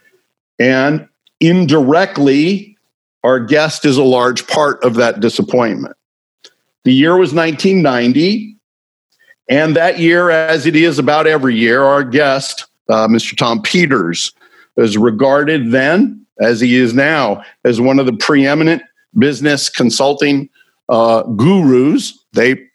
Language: English